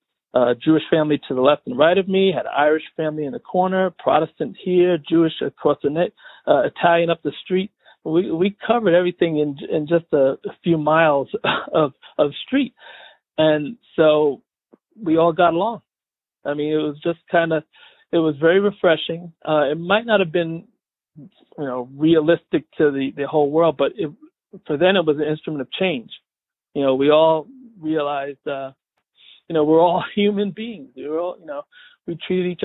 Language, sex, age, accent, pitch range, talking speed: English, male, 50-69, American, 145-190 Hz, 185 wpm